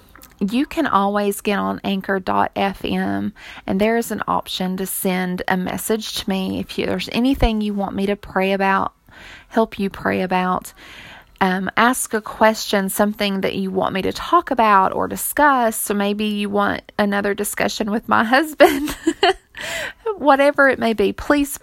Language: English